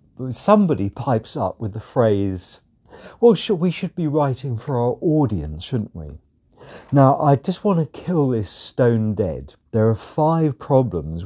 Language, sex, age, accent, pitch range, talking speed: English, male, 50-69, British, 100-135 Hz, 155 wpm